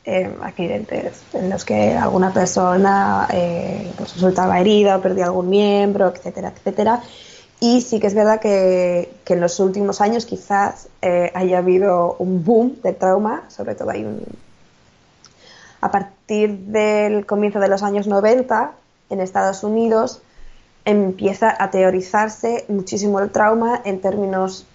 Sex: female